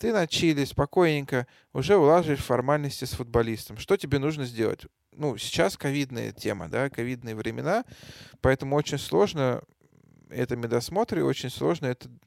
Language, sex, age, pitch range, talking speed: Russian, male, 20-39, 115-135 Hz, 130 wpm